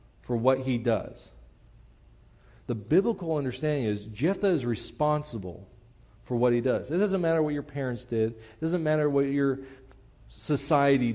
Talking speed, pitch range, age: 150 wpm, 100-135 Hz, 40-59